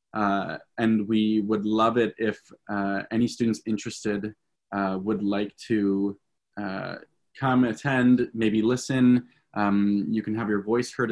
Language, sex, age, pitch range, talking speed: English, male, 20-39, 105-120 Hz, 145 wpm